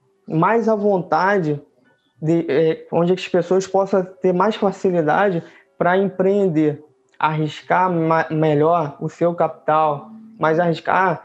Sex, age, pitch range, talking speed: male, 20-39, 155-190 Hz, 115 wpm